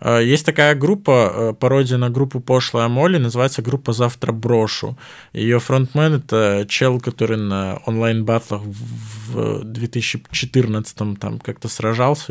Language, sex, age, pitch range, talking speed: Russian, male, 20-39, 110-135 Hz, 120 wpm